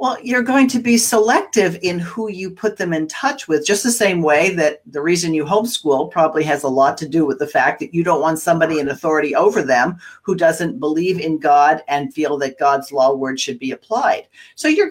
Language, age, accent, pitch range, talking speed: English, 50-69, American, 155-205 Hz, 230 wpm